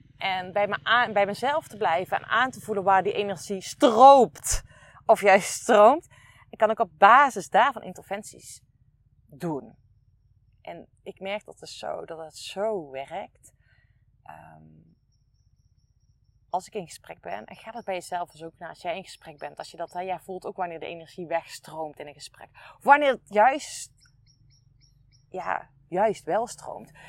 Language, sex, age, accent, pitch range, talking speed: Dutch, female, 30-49, Dutch, 140-225 Hz, 170 wpm